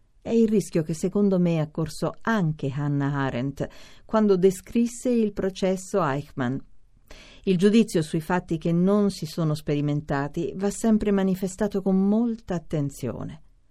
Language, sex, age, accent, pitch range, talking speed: Italian, female, 50-69, native, 145-200 Hz, 130 wpm